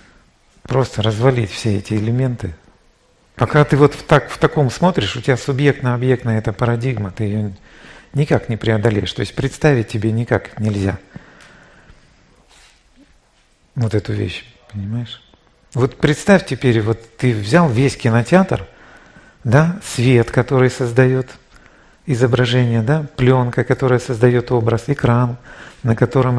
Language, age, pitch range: Russian, 40-59, 110-135 Hz